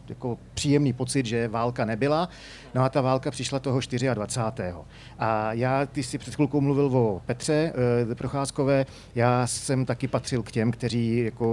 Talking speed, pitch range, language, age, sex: 165 wpm, 115-135 Hz, Czech, 40-59, male